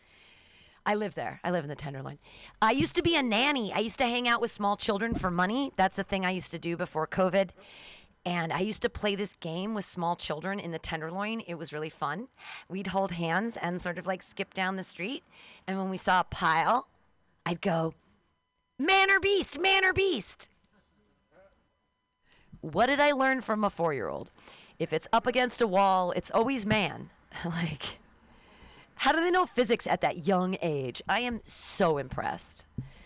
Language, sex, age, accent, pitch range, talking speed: English, female, 40-59, American, 165-235 Hz, 190 wpm